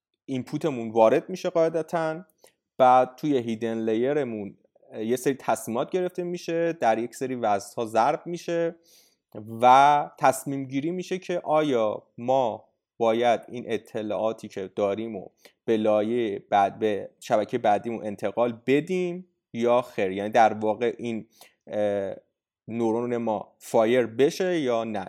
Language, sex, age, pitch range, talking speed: Persian, male, 30-49, 110-145 Hz, 120 wpm